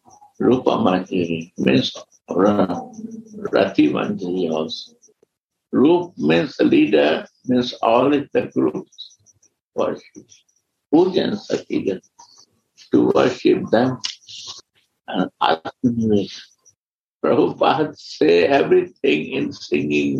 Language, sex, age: English, male, 60-79